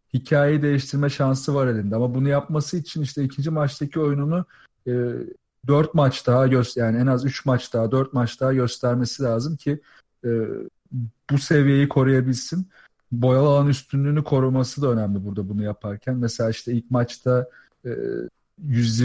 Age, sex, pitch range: 40-59, male, 125-150 Hz